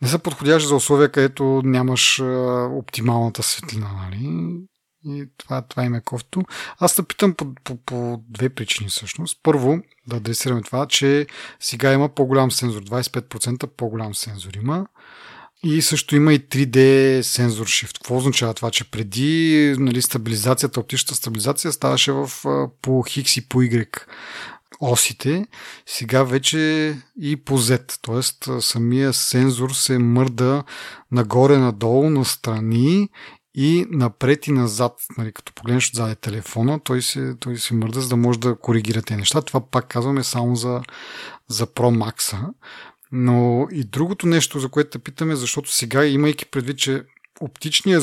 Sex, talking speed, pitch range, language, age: male, 145 wpm, 120-145 Hz, Bulgarian, 30-49